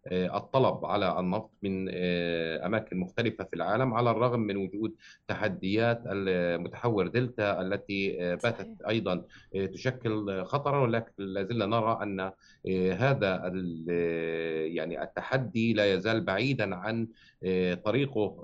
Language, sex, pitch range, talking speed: Arabic, male, 90-115 Hz, 100 wpm